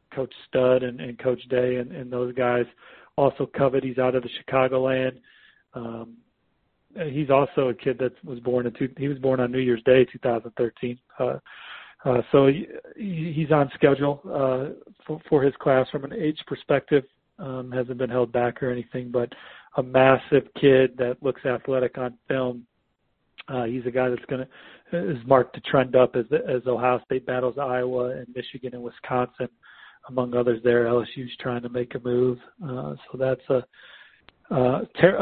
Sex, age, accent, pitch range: male, 40-59, American, 125-140 Hz